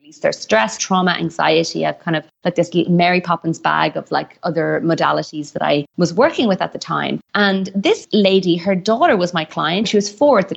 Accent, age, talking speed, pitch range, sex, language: Irish, 20-39, 210 wpm, 180-250 Hz, female, English